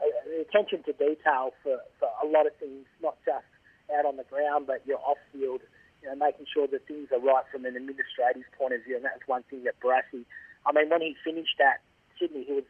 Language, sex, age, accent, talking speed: English, male, 40-59, Australian, 220 wpm